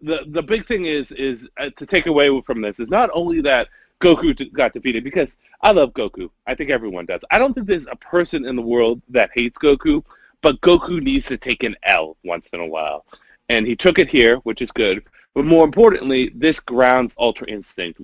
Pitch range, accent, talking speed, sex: 115-170 Hz, American, 215 wpm, male